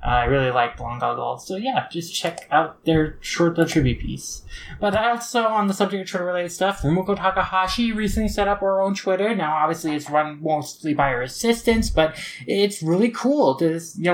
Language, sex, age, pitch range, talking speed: English, male, 20-39, 135-180 Hz, 195 wpm